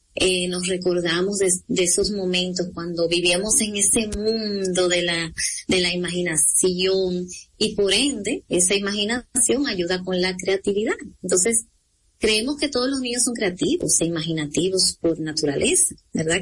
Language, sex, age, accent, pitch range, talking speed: Spanish, female, 30-49, American, 180-235 Hz, 140 wpm